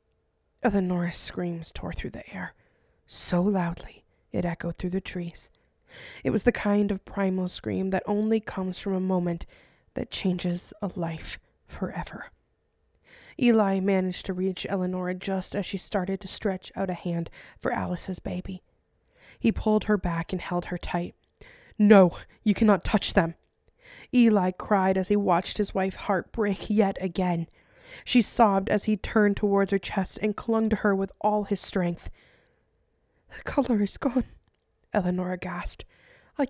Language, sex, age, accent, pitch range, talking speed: English, female, 20-39, American, 175-215 Hz, 155 wpm